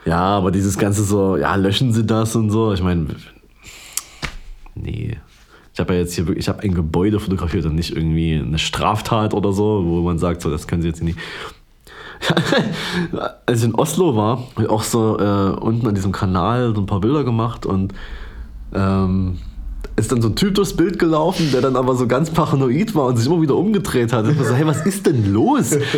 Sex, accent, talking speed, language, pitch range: male, German, 210 wpm, German, 95-150 Hz